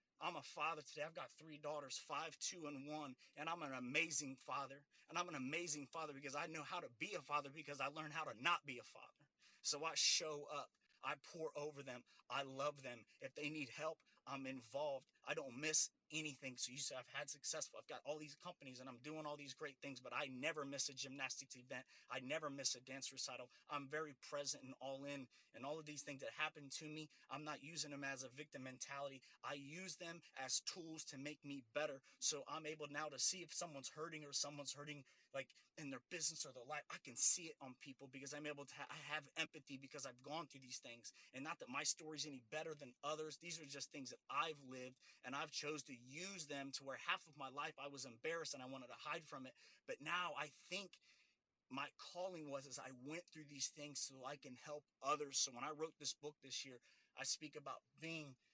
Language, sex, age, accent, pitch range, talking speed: English, male, 30-49, American, 135-155 Hz, 235 wpm